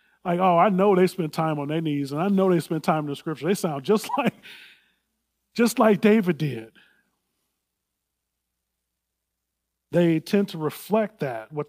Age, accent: 30-49, American